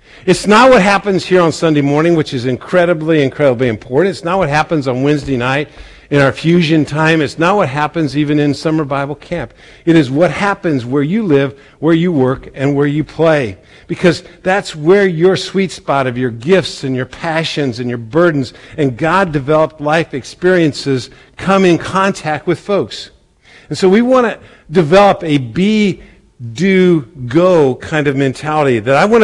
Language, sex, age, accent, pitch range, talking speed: English, male, 50-69, American, 135-180 Hz, 175 wpm